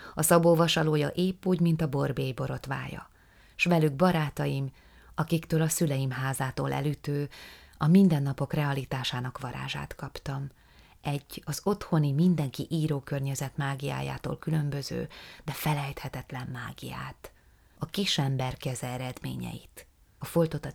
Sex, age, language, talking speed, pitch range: female, 30-49, Hungarian, 115 wpm, 130-160 Hz